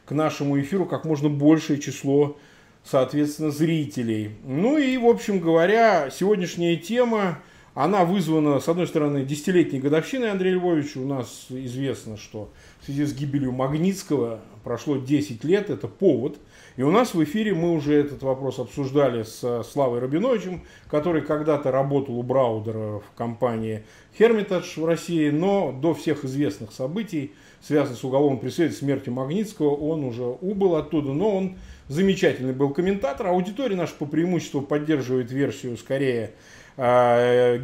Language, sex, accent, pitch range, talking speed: Russian, male, native, 130-170 Hz, 145 wpm